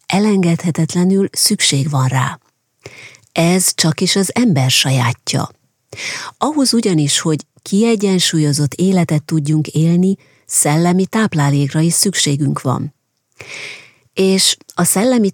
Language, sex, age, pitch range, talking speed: Hungarian, female, 30-49, 145-190 Hz, 100 wpm